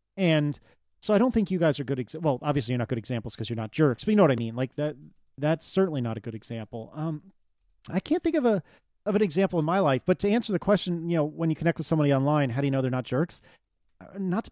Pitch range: 125-180 Hz